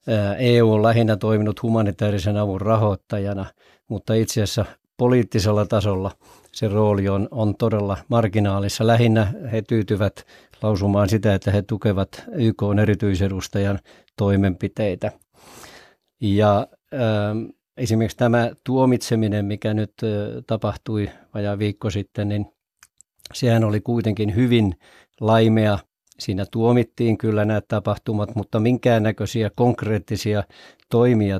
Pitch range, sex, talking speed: 105-115 Hz, male, 105 wpm